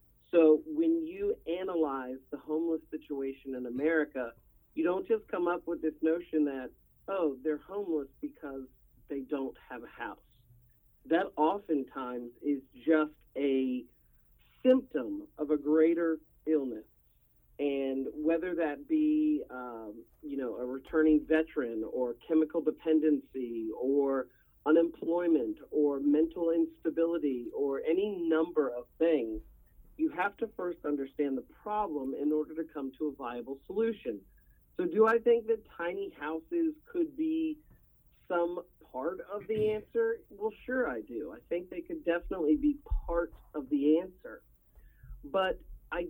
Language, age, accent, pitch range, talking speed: English, 40-59, American, 140-180 Hz, 135 wpm